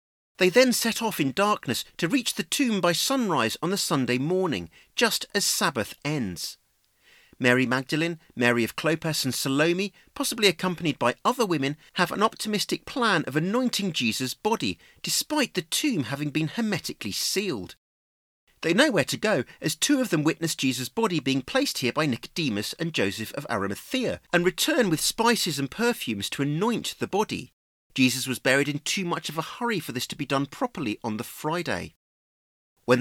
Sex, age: male, 40-59